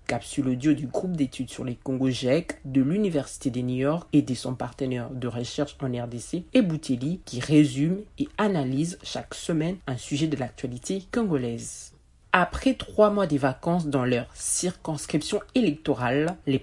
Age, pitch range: 50-69, 125-165 Hz